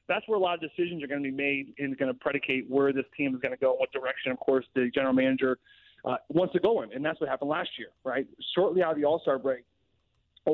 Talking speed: 275 wpm